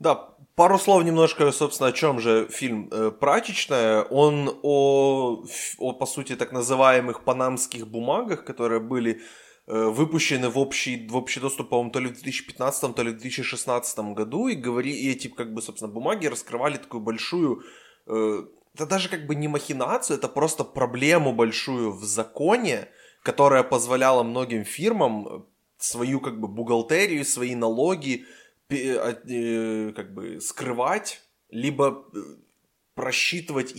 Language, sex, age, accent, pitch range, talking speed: Ukrainian, male, 20-39, native, 115-135 Hz, 130 wpm